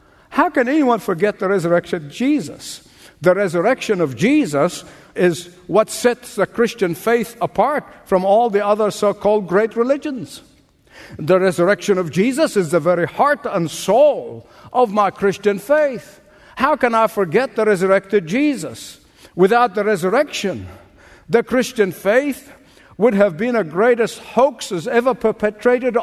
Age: 60-79